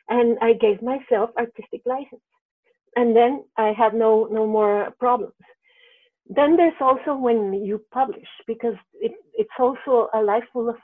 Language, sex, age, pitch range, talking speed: English, female, 50-69, 220-275 Hz, 150 wpm